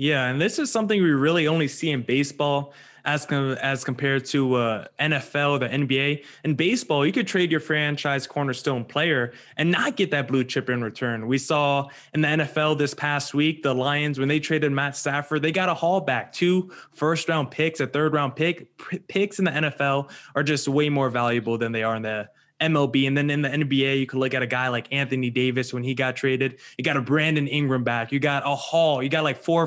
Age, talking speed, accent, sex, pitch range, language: 20-39, 230 wpm, American, male, 140-175 Hz, English